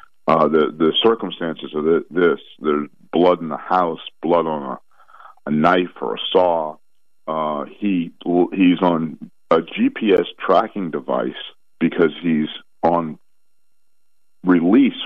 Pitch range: 80-95 Hz